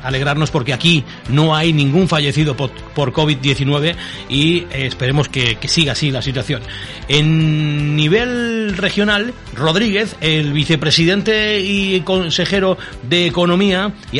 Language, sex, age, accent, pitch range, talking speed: Spanish, male, 40-59, Spanish, 145-180 Hz, 115 wpm